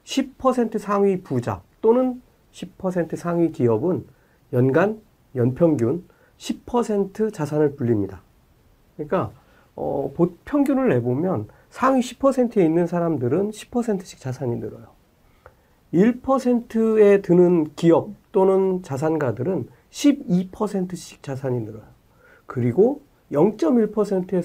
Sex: male